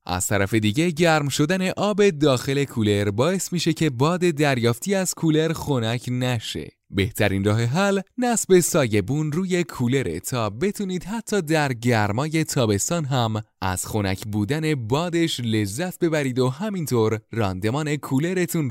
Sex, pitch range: male, 110-170 Hz